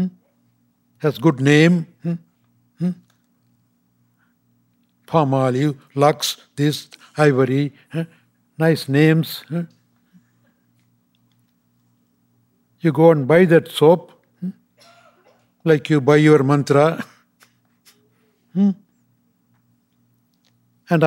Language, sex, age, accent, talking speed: English, male, 60-79, Indian, 80 wpm